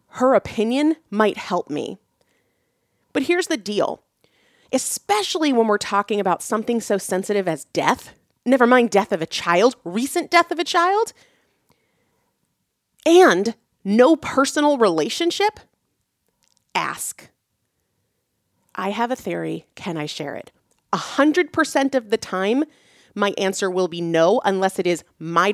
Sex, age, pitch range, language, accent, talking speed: female, 30-49, 180-265 Hz, English, American, 135 wpm